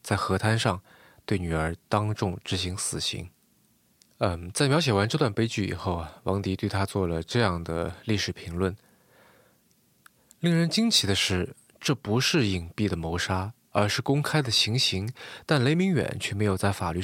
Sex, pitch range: male, 95-125 Hz